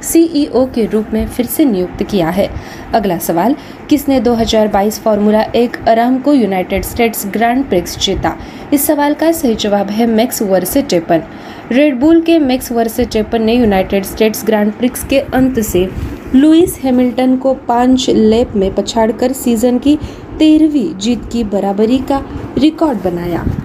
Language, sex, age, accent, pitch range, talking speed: Marathi, female, 20-39, native, 210-260 Hz, 155 wpm